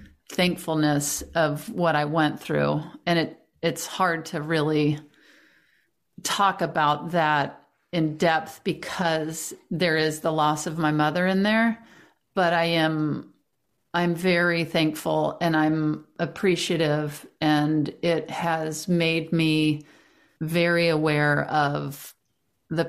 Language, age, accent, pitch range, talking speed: English, 50-69, American, 155-185 Hz, 115 wpm